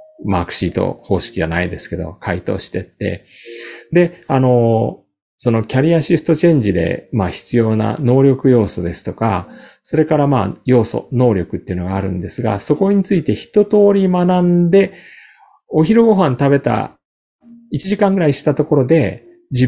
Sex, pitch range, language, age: male, 100-170 Hz, Japanese, 40-59